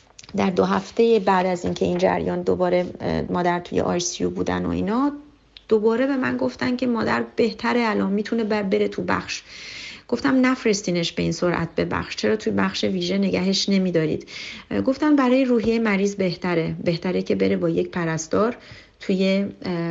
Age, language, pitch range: 30-49, Persian, 160-200 Hz